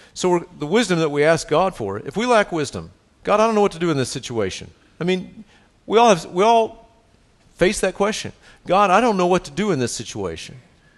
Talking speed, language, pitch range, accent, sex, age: 235 wpm, English, 120-190 Hz, American, male, 50-69